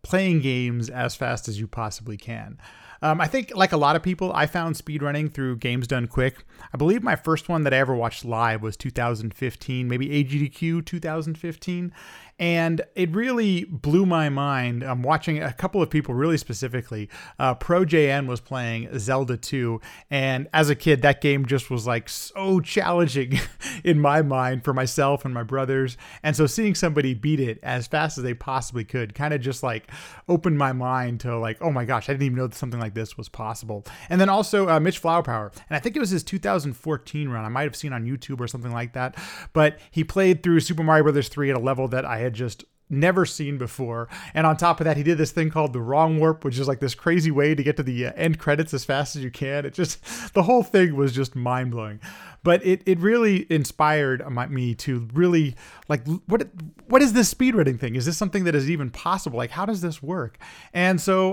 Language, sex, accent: English, male, American